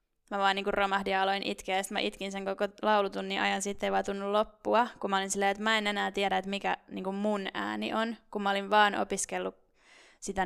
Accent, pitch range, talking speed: native, 195-215 Hz, 230 wpm